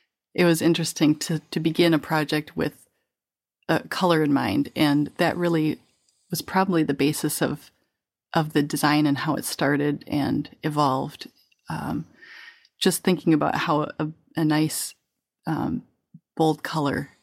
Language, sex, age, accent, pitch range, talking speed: English, female, 30-49, American, 145-165 Hz, 145 wpm